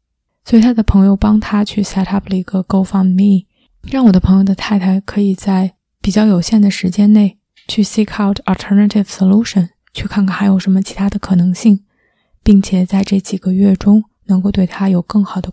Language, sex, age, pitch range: Chinese, female, 20-39, 190-210 Hz